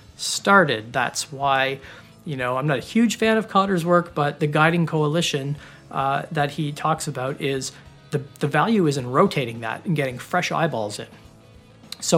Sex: male